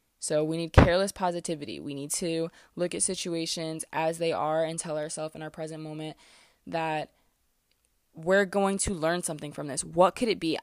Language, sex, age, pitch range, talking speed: English, female, 20-39, 160-185 Hz, 185 wpm